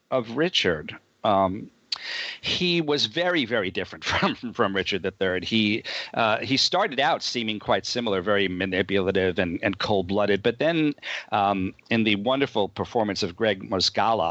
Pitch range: 95-115 Hz